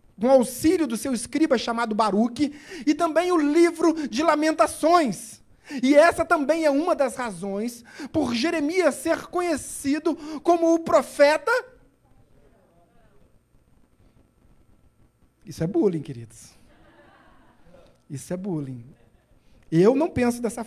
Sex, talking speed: male, 115 wpm